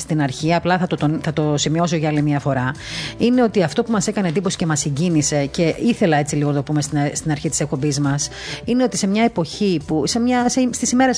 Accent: native